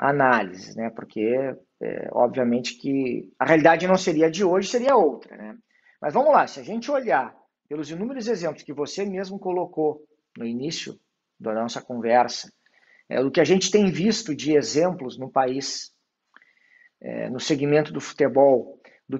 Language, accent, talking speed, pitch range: Portuguese, Brazilian, 160 wpm, 150-230 Hz